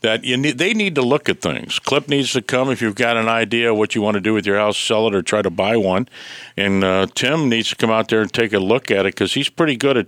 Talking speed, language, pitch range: 315 wpm, English, 110-155 Hz